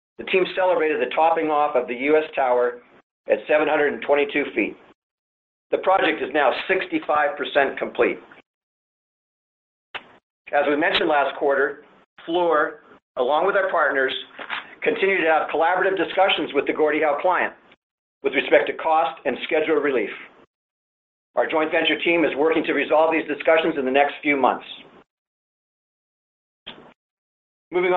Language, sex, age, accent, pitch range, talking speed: English, male, 50-69, American, 135-165 Hz, 135 wpm